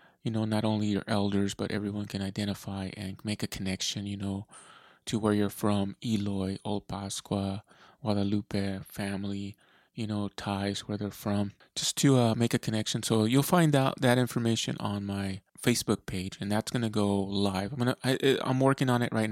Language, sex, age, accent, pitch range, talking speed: English, male, 20-39, American, 100-120 Hz, 185 wpm